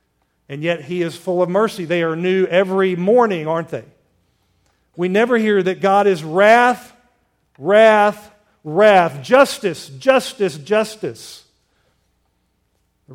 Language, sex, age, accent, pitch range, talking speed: English, male, 50-69, American, 150-195 Hz, 125 wpm